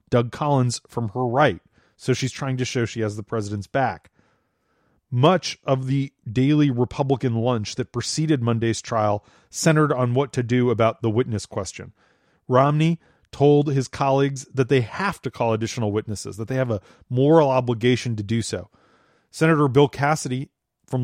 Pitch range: 115-145 Hz